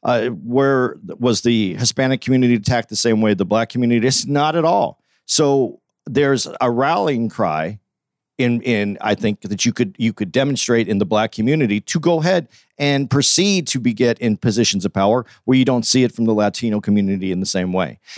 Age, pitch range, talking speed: 50-69, 105-145 Hz, 200 wpm